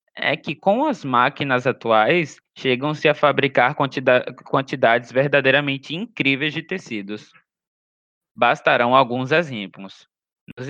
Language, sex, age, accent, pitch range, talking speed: Portuguese, male, 20-39, Brazilian, 130-170 Hz, 100 wpm